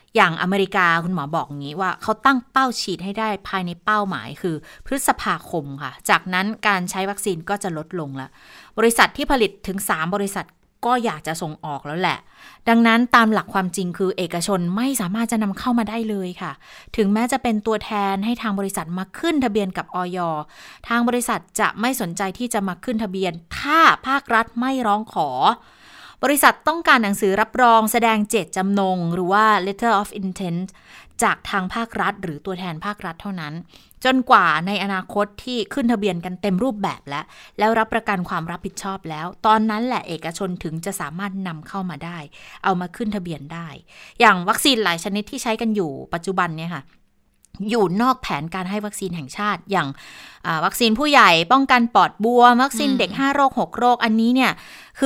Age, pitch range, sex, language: 20-39, 180-230 Hz, female, Thai